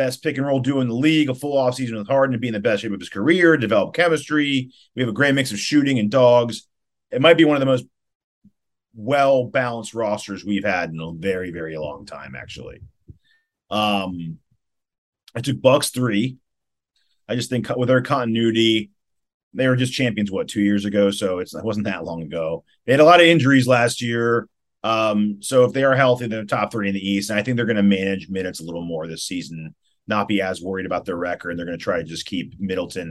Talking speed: 225 wpm